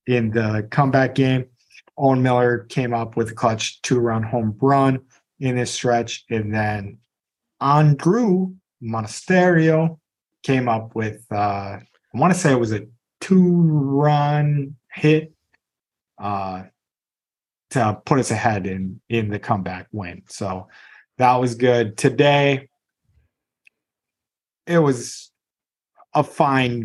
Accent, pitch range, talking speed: American, 110-140 Hz, 125 wpm